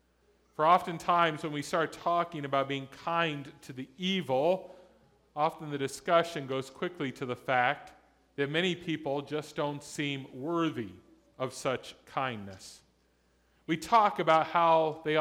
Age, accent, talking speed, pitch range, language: 40-59, American, 135 wpm, 135-175 Hz, English